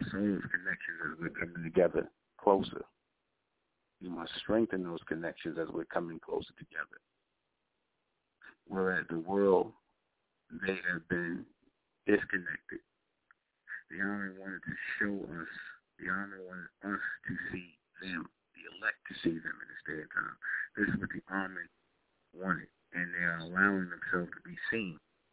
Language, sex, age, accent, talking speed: English, male, 60-79, American, 150 wpm